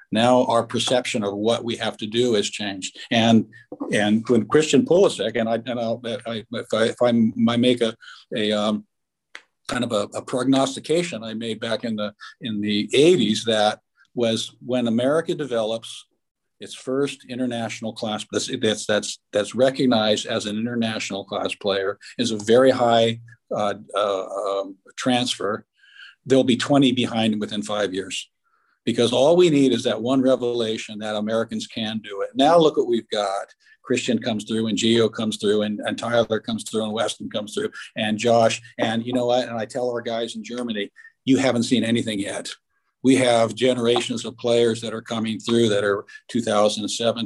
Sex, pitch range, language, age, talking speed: male, 110-125 Hz, English, 50-69, 175 wpm